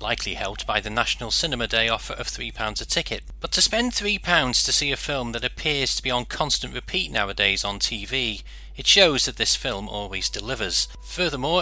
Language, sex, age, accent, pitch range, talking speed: English, male, 40-59, British, 105-150 Hz, 195 wpm